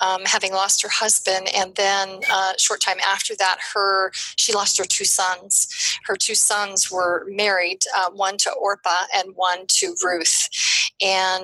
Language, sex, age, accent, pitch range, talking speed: English, female, 30-49, American, 190-220 Hz, 175 wpm